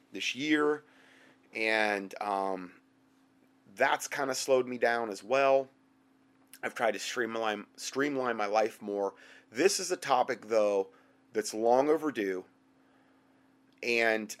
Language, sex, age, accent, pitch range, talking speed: English, male, 30-49, American, 115-175 Hz, 120 wpm